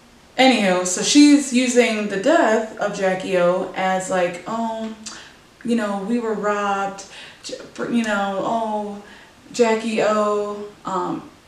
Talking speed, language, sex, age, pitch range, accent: 125 wpm, English, female, 20-39, 200-260 Hz, American